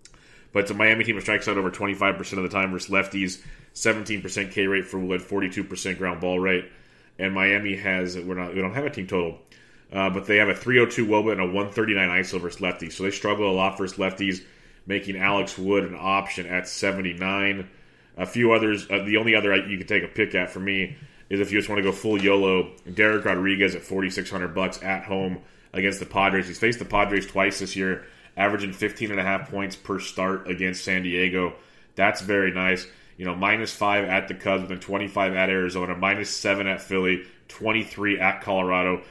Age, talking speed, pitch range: 30-49, 200 wpm, 95-105 Hz